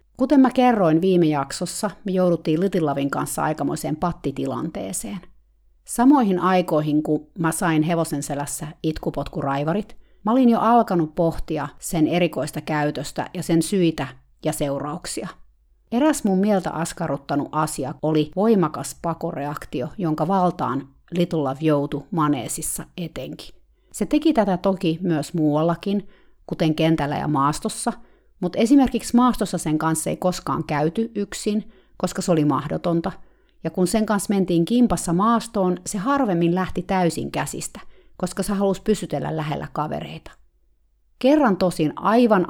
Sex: female